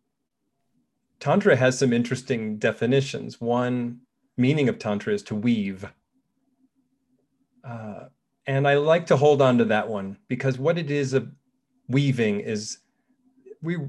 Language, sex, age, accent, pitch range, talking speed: English, male, 30-49, American, 120-180 Hz, 130 wpm